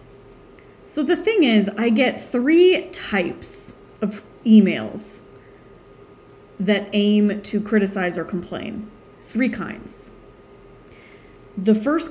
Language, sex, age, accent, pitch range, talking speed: English, female, 30-49, American, 195-260 Hz, 100 wpm